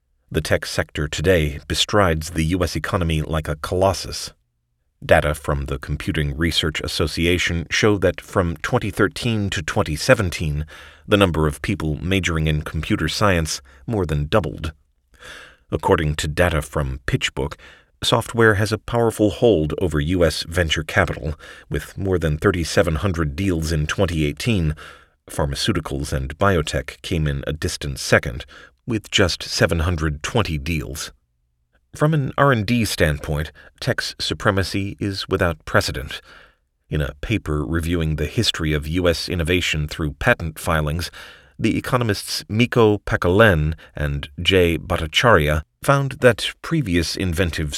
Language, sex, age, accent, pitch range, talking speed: English, male, 40-59, American, 75-95 Hz, 125 wpm